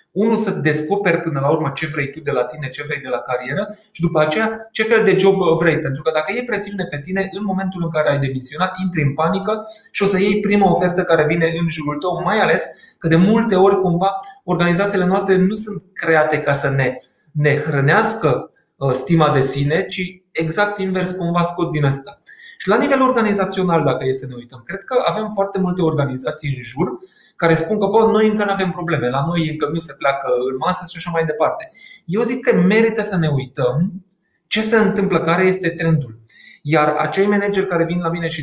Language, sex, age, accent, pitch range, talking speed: Romanian, male, 20-39, native, 150-195 Hz, 215 wpm